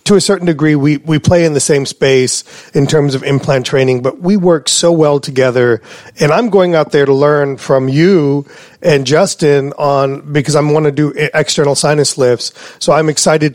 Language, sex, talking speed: English, male, 200 wpm